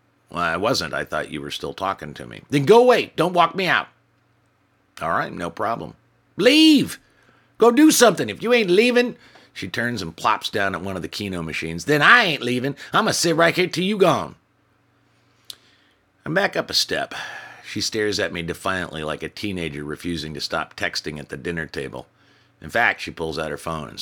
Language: English